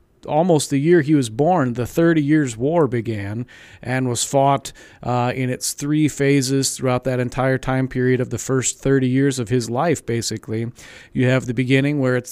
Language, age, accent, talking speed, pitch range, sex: English, 40-59, American, 190 wpm, 125-145 Hz, male